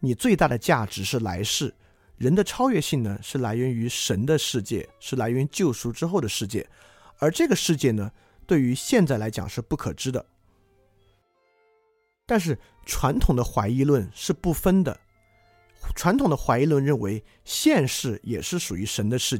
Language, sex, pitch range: Chinese, male, 110-155 Hz